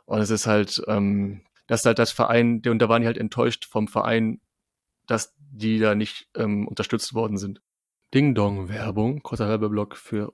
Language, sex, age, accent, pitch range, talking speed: German, male, 30-49, German, 105-120 Hz, 185 wpm